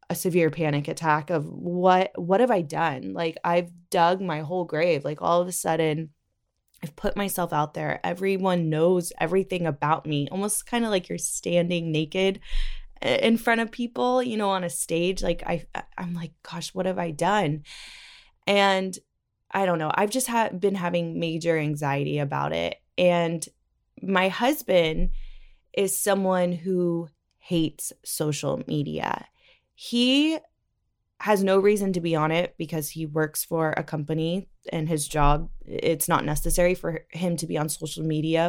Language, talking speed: English, 160 wpm